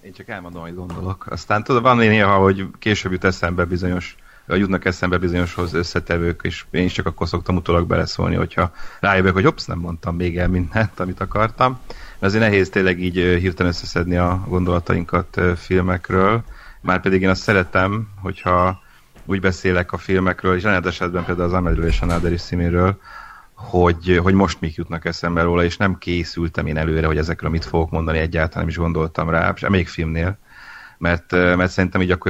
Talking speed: 180 wpm